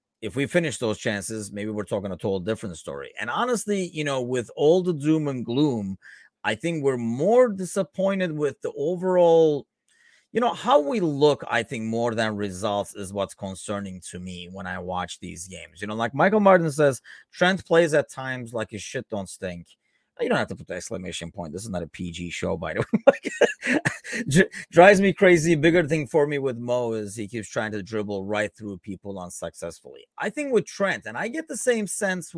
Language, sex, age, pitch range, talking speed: English, male, 30-49, 105-160 Hz, 205 wpm